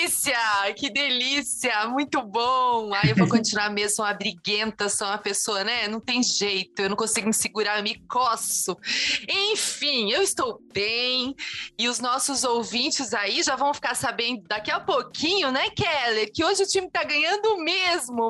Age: 30-49